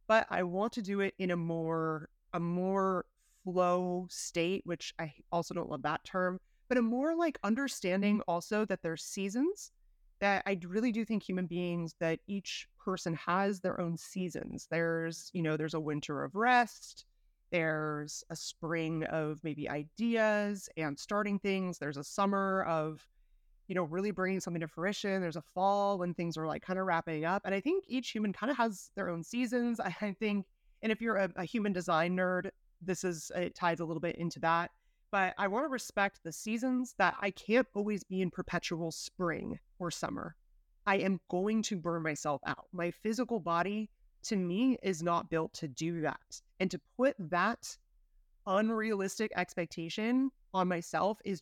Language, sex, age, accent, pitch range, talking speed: English, female, 30-49, American, 165-205 Hz, 180 wpm